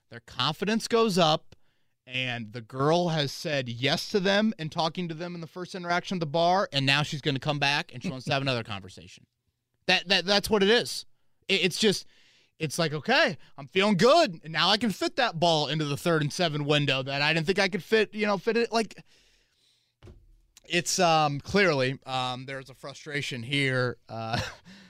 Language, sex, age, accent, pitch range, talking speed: English, male, 30-49, American, 120-170 Hz, 205 wpm